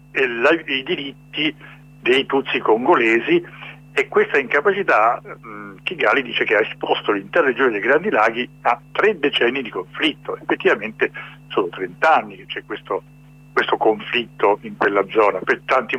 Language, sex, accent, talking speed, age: Italian, male, native, 135 wpm, 60-79